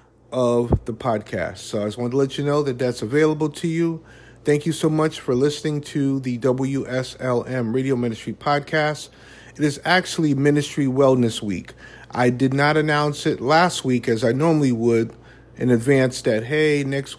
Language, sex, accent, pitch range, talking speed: English, male, American, 120-145 Hz, 175 wpm